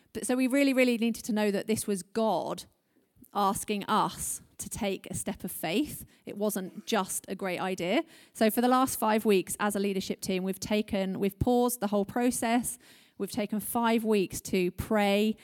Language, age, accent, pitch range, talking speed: English, 30-49, British, 195-225 Hz, 185 wpm